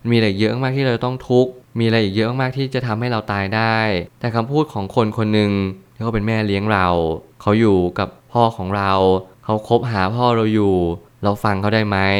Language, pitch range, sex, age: Thai, 100-120 Hz, male, 20-39